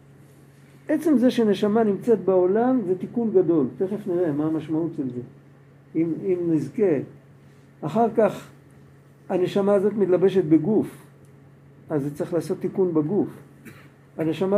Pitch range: 155-200 Hz